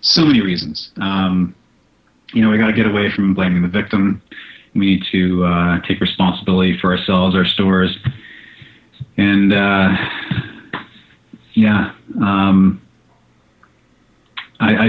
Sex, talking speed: male, 120 wpm